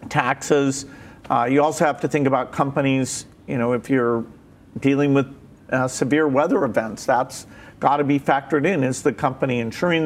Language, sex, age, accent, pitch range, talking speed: English, male, 50-69, American, 130-150 Hz, 175 wpm